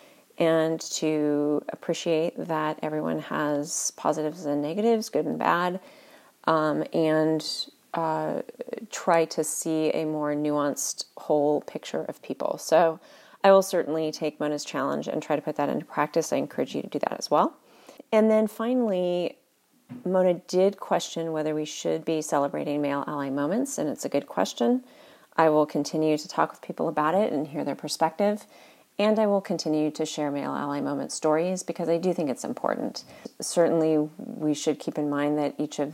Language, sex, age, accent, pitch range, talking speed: English, female, 30-49, American, 150-180 Hz, 175 wpm